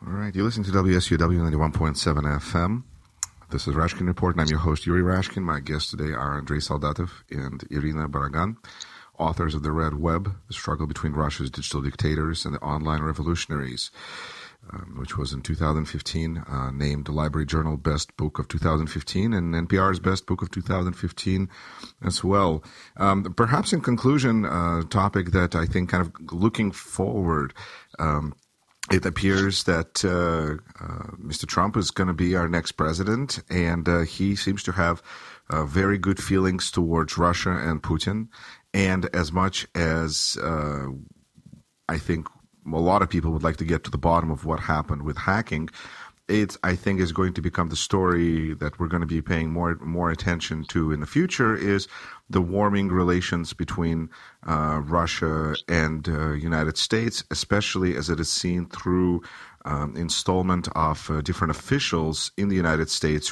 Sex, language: male, English